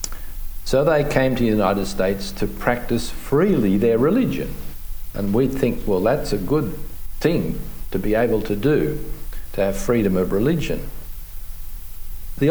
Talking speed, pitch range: 150 wpm, 85-135 Hz